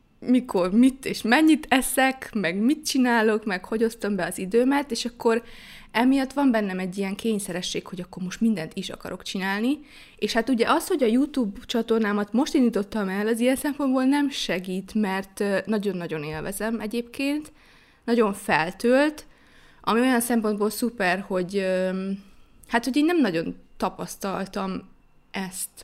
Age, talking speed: 20-39, 140 wpm